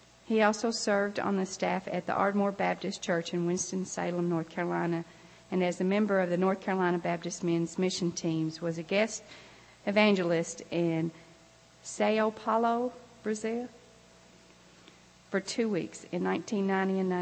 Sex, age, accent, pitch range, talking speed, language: female, 50-69, American, 175-210 Hz, 140 wpm, English